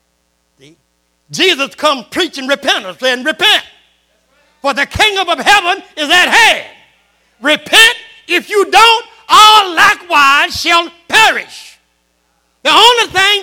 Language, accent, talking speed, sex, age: English, American, 110 wpm, male, 60-79